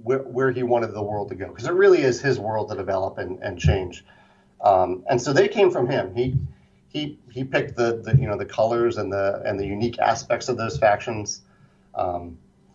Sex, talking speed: male, 210 wpm